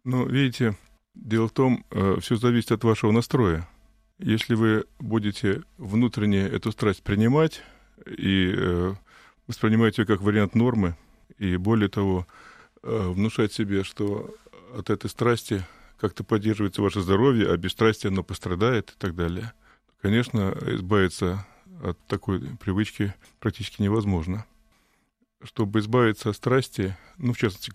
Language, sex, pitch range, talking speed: Russian, male, 100-120 Hz, 130 wpm